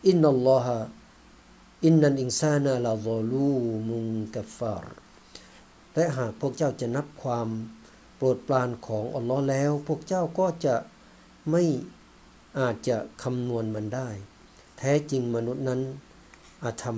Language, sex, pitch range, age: Thai, male, 115-145 Hz, 60-79